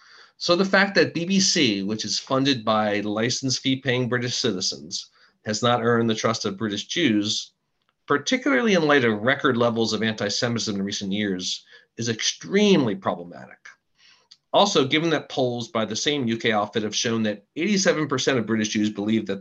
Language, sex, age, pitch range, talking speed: English, male, 40-59, 105-130 Hz, 170 wpm